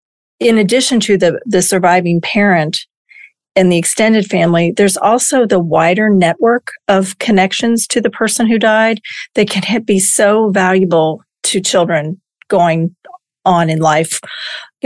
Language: English